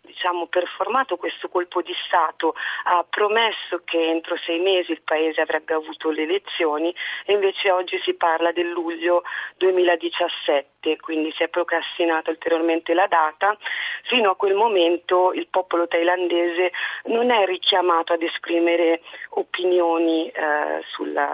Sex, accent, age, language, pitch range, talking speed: female, native, 40-59, Italian, 165-185 Hz, 135 wpm